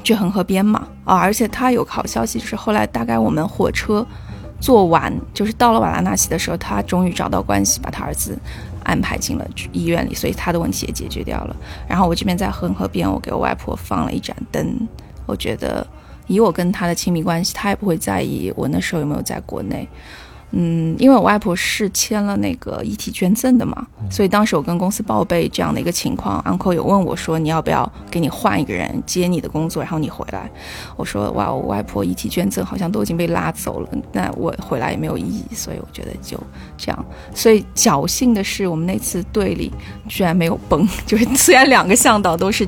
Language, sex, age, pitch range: Chinese, female, 20-39, 160-210 Hz